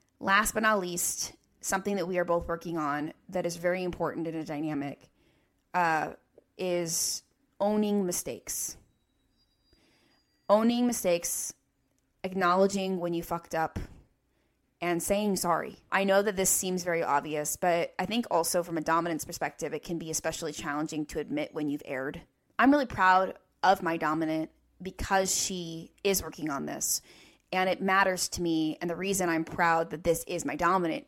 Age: 20-39